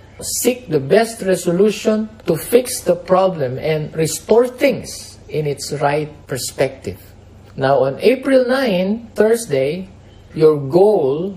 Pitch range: 135-215 Hz